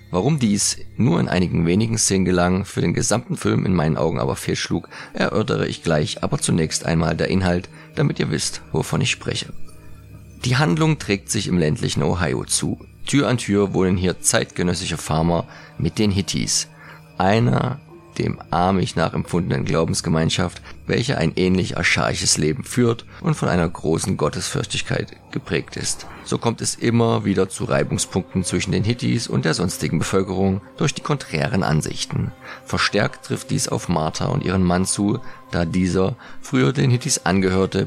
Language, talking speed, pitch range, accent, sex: German, 160 wpm, 90-115 Hz, German, male